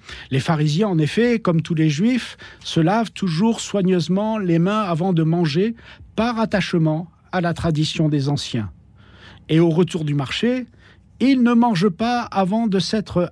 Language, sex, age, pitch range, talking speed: French, male, 50-69, 160-225 Hz, 160 wpm